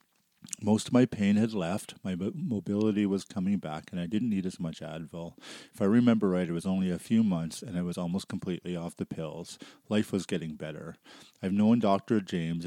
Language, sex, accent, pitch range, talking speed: English, male, American, 85-110 Hz, 210 wpm